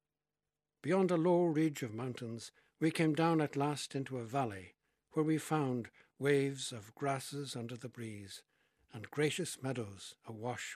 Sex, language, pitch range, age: male, English, 120-150 Hz, 60-79